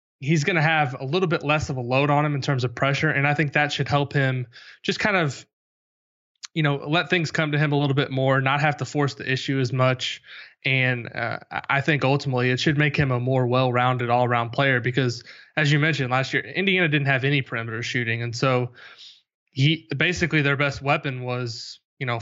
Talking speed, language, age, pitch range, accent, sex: 225 wpm, English, 20-39, 125-145 Hz, American, male